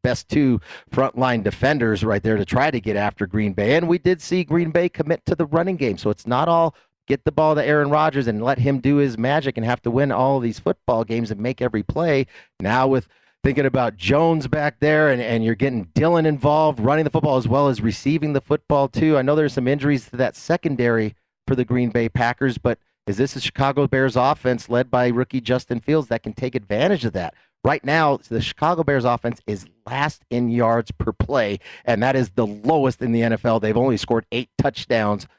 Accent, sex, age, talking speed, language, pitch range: American, male, 30-49, 220 wpm, English, 115-145 Hz